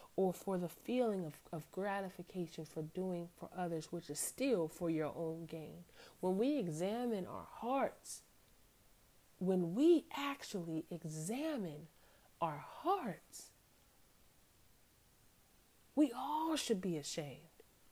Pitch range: 165-220 Hz